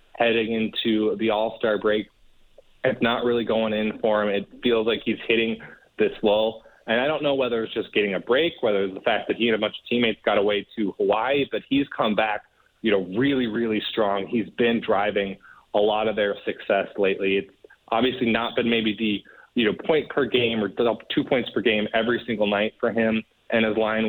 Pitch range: 100-115 Hz